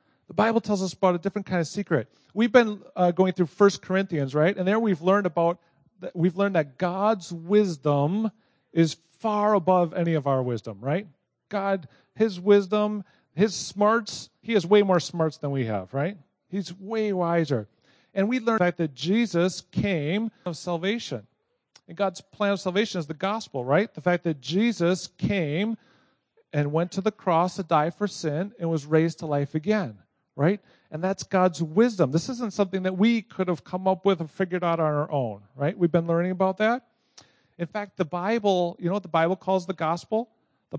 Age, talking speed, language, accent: 40-59, 195 wpm, English, American